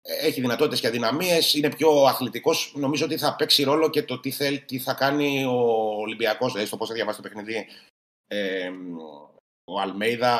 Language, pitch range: Greek, 105-140 Hz